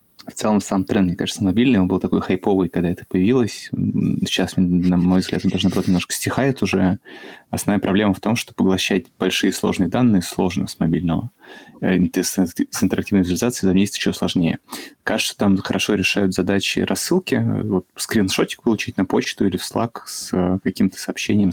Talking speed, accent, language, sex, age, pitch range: 165 wpm, native, Russian, male, 20-39, 90-100 Hz